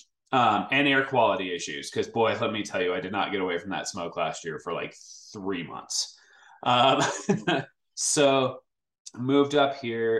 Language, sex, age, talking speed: English, male, 20-39, 175 wpm